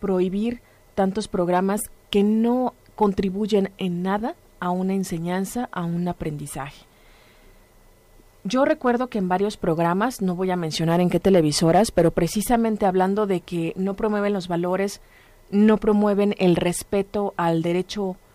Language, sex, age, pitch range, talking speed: Spanish, female, 30-49, 180-215 Hz, 135 wpm